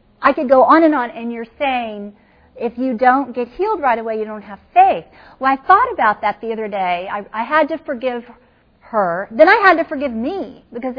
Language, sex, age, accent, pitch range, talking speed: English, female, 40-59, American, 250-310 Hz, 225 wpm